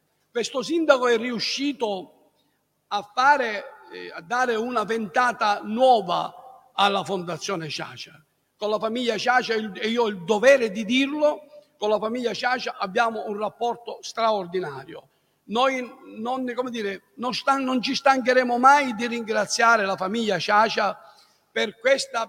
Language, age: Italian, 60-79